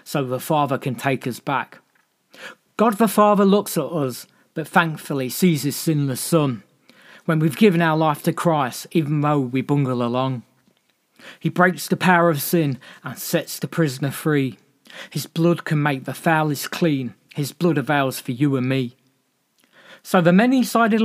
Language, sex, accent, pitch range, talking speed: English, male, British, 140-180 Hz, 170 wpm